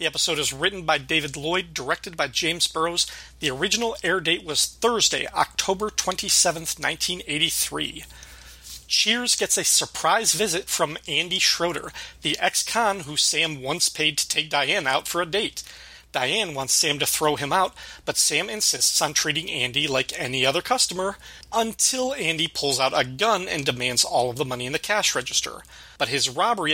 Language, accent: English, American